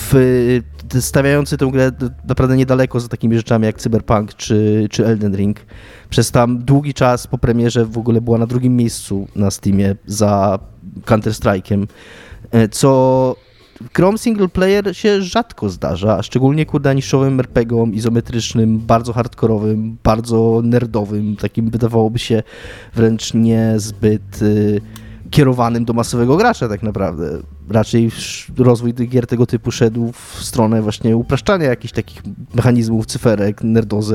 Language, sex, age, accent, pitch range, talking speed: Polish, male, 20-39, native, 105-130 Hz, 130 wpm